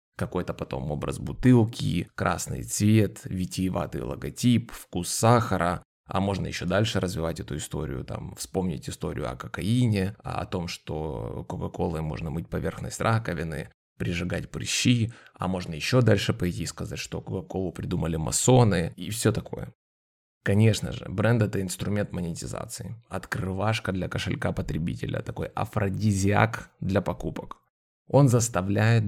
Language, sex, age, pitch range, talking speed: Russian, male, 20-39, 90-110 Hz, 130 wpm